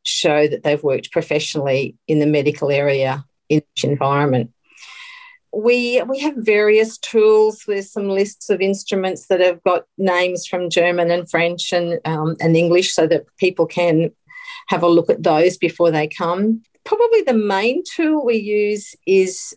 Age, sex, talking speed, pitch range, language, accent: 40-59, female, 160 wpm, 160-200 Hz, English, Australian